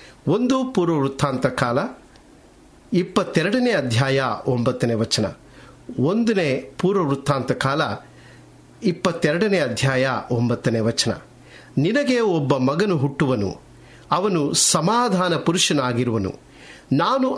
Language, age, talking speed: Kannada, 50-69, 75 wpm